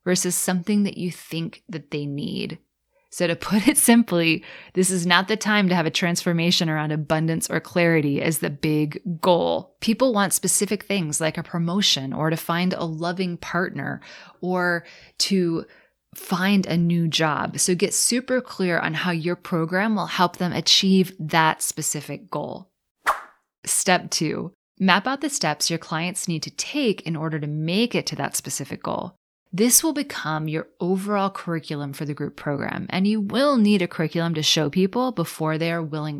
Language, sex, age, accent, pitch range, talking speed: English, female, 20-39, American, 160-200 Hz, 175 wpm